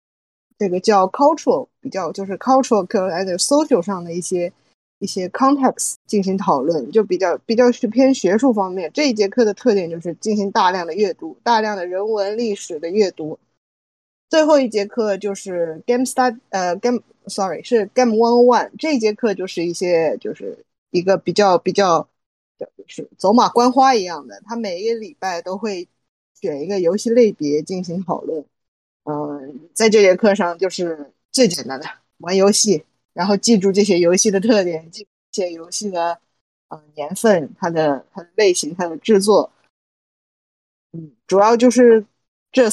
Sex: female